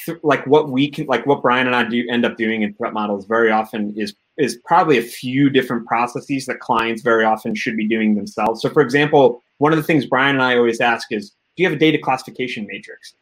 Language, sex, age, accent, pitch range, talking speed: English, male, 30-49, American, 120-160 Hz, 240 wpm